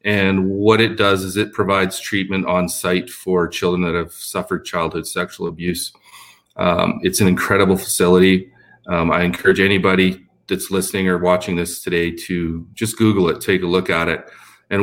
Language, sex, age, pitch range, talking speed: English, male, 30-49, 85-100 Hz, 175 wpm